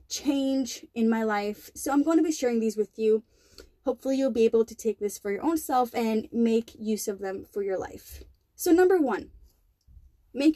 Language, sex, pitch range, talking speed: English, female, 225-295 Hz, 205 wpm